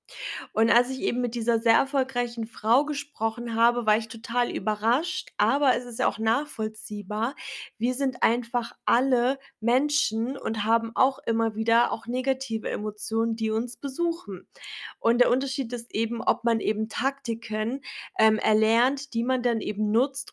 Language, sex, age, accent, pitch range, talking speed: German, female, 20-39, German, 215-245 Hz, 155 wpm